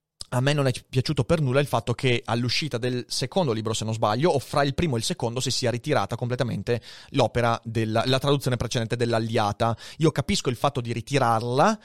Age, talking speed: 30-49, 205 wpm